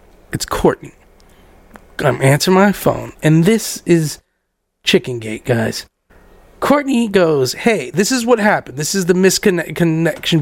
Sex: male